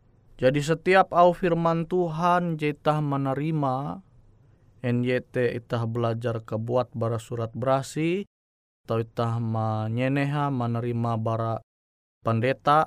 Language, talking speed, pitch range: Indonesian, 90 wpm, 115-145 Hz